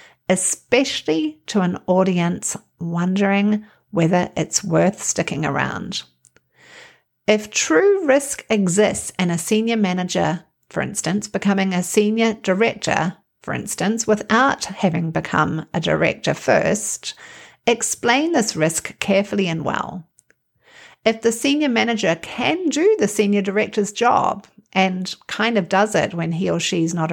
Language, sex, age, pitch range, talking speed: English, female, 50-69, 180-220 Hz, 130 wpm